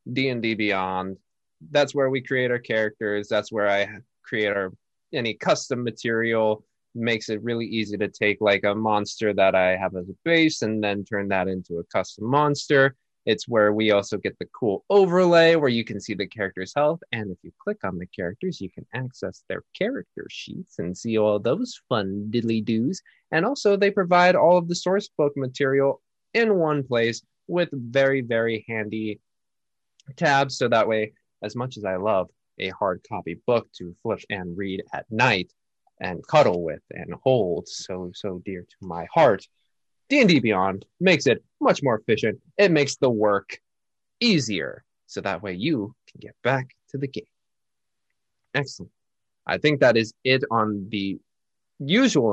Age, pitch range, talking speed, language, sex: 20-39, 105-145 Hz, 175 wpm, English, male